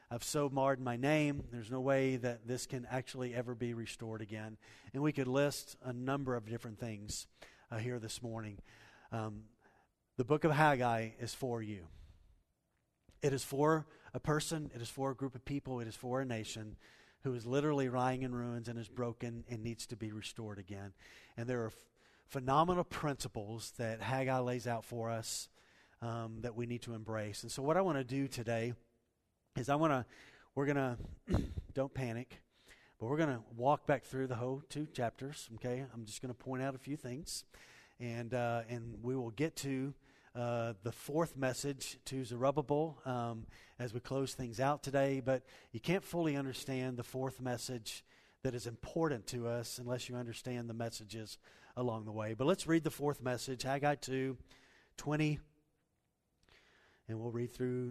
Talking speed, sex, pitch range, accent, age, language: 185 wpm, male, 115-135 Hz, American, 40-59, English